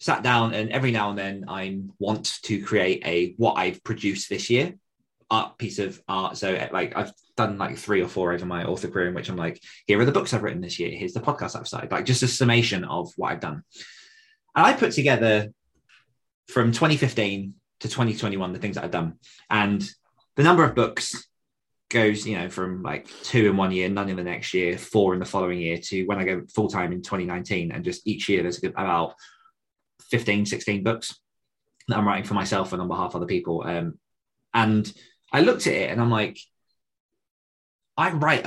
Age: 20-39